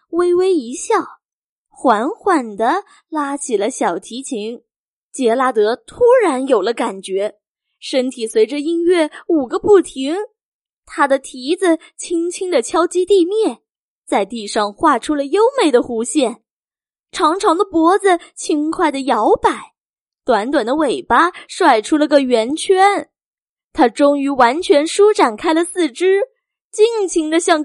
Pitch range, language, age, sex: 275-385 Hz, Chinese, 10-29, female